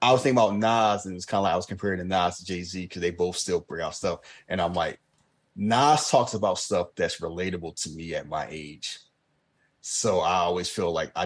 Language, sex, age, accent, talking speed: English, male, 30-49, American, 230 wpm